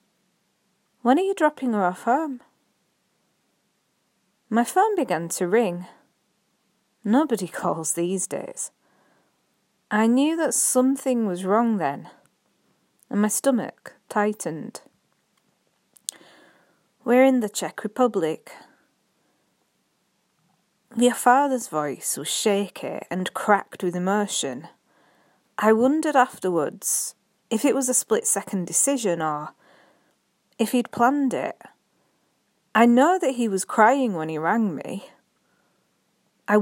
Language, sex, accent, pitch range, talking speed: English, female, British, 195-250 Hz, 110 wpm